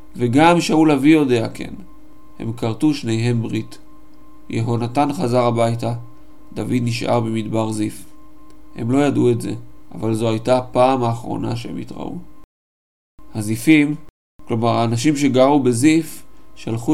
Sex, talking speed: male, 120 wpm